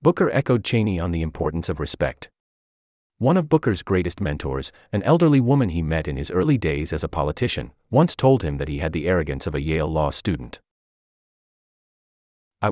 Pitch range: 75-110 Hz